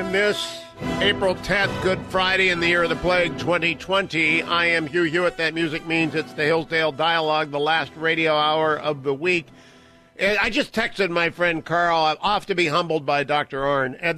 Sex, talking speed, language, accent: male, 195 wpm, English, American